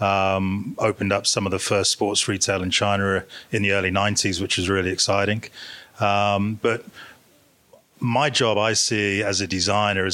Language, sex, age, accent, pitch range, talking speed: English, male, 30-49, British, 95-110 Hz, 165 wpm